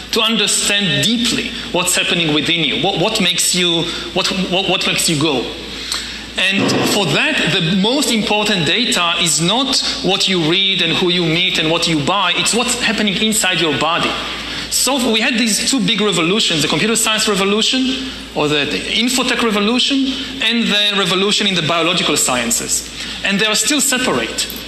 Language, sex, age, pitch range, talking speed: English, male, 40-59, 175-230 Hz, 160 wpm